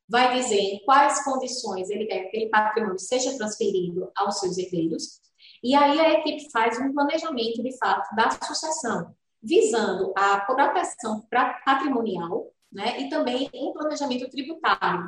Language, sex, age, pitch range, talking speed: Portuguese, female, 20-39, 200-260 Hz, 145 wpm